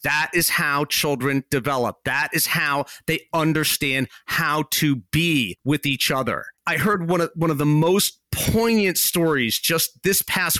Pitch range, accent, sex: 125-175 Hz, American, male